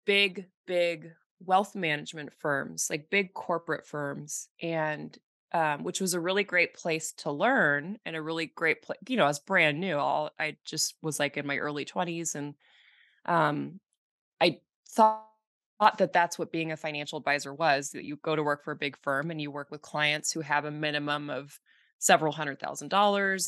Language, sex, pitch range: English, female, 150-190 Hz